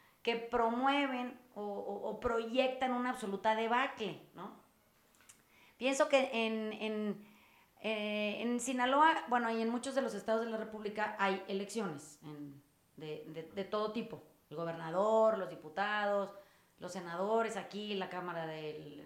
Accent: Mexican